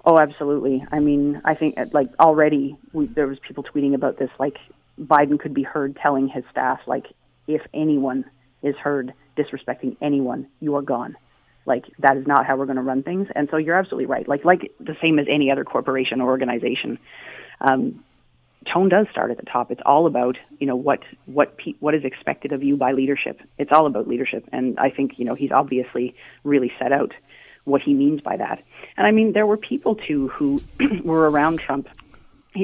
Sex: female